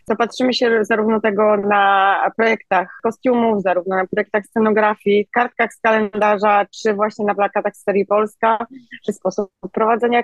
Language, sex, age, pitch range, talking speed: Polish, female, 20-39, 195-235 Hz, 140 wpm